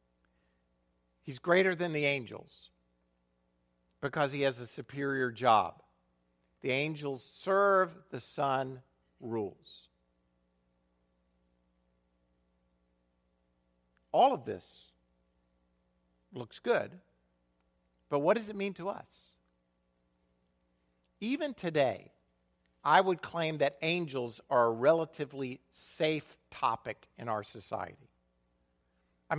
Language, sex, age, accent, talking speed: English, male, 50-69, American, 90 wpm